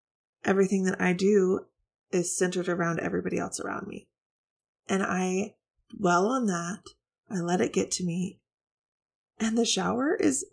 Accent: American